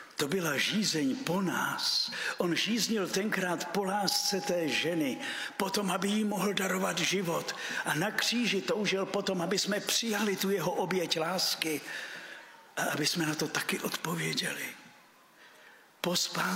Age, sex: 60-79, male